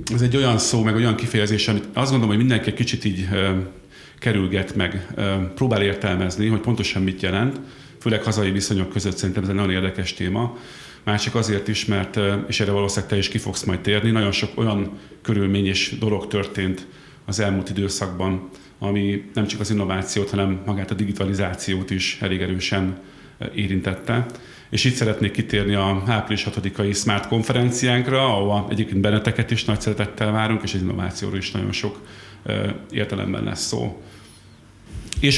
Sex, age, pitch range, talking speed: male, 40-59, 95-110 Hz, 165 wpm